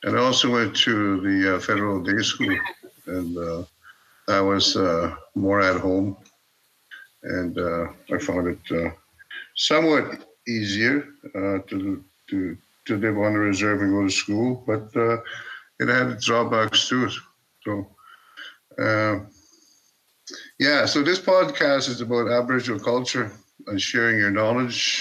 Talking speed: 135 wpm